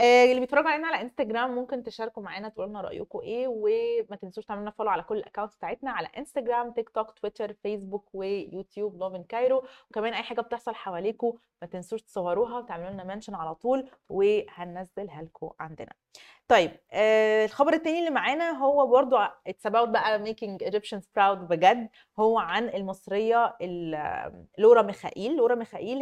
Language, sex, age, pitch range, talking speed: Arabic, female, 20-39, 190-240 Hz, 150 wpm